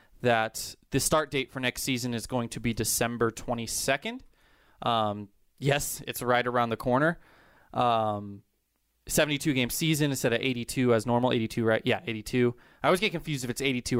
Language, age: English, 20-39